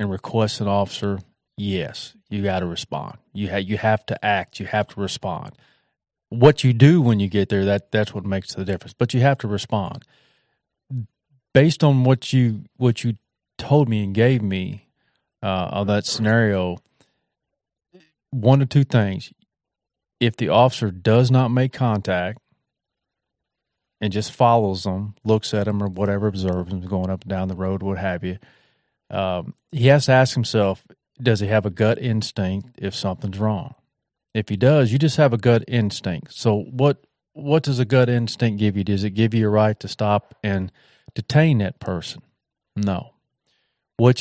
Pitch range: 100-125 Hz